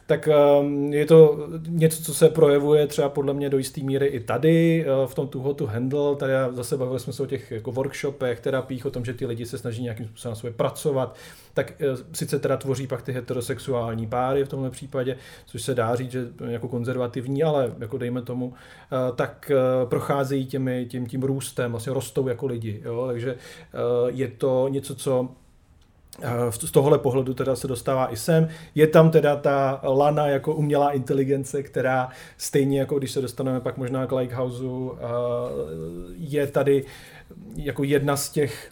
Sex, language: male, Czech